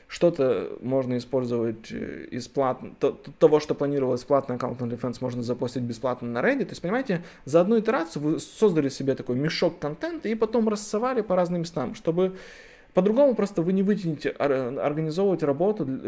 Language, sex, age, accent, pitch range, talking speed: Russian, male, 20-39, native, 135-185 Hz, 155 wpm